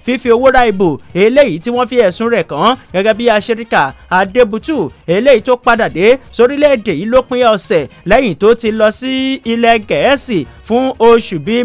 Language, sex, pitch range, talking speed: English, male, 200-250 Hz, 190 wpm